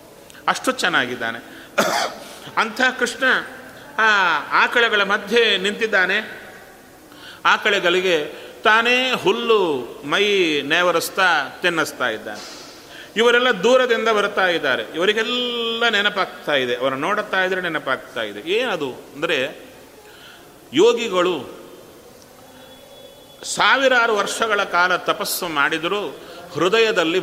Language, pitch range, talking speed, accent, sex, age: Kannada, 185-240 Hz, 75 wpm, native, male, 40-59